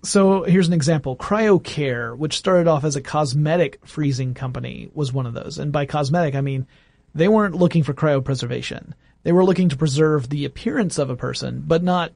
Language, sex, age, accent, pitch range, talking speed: English, male, 30-49, American, 135-165 Hz, 190 wpm